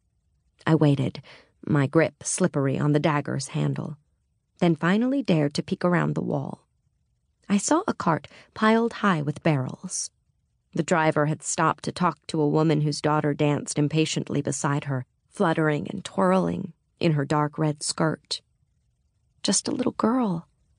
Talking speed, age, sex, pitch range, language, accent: 150 wpm, 30-49, female, 145-185 Hz, English, American